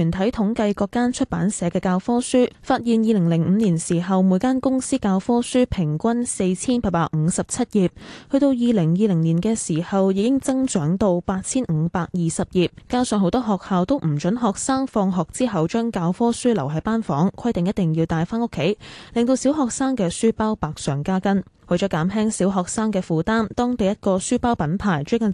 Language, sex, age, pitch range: Chinese, female, 10-29, 170-240 Hz